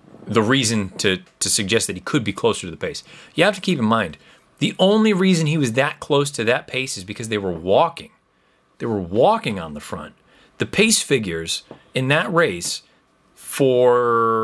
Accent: American